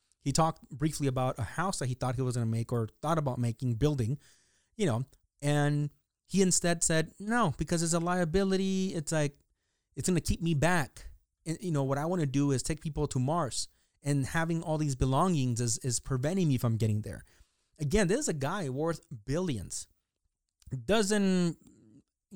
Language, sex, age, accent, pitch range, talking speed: English, male, 30-49, American, 120-150 Hz, 190 wpm